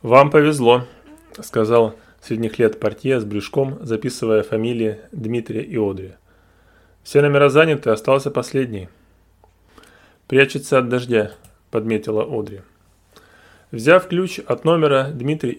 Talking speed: 110 wpm